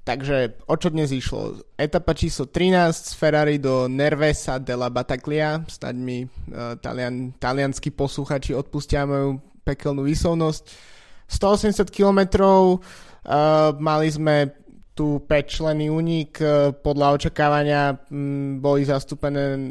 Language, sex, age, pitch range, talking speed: Slovak, male, 20-39, 135-150 Hz, 115 wpm